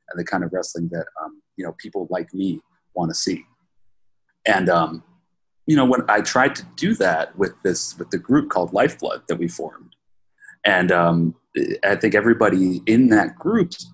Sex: male